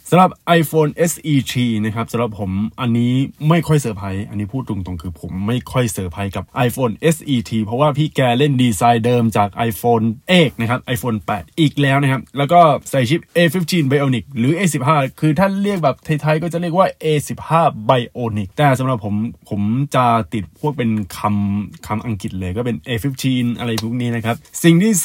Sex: male